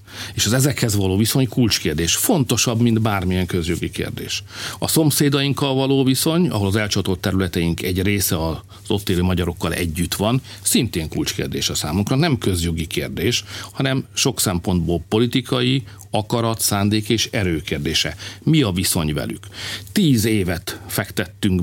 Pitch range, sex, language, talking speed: 90-115 Hz, male, Hungarian, 135 wpm